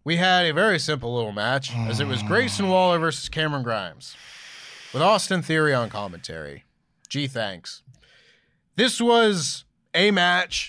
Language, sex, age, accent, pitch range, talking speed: English, male, 20-39, American, 125-170 Hz, 145 wpm